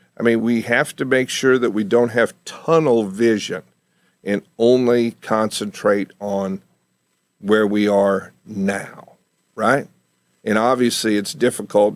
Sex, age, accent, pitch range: male, 50-69, American, 100-120 Hz